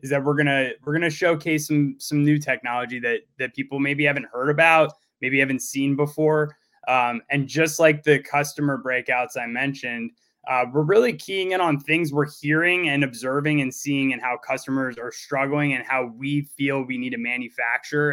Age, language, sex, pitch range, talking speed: 20-39, English, male, 125-150 Hz, 190 wpm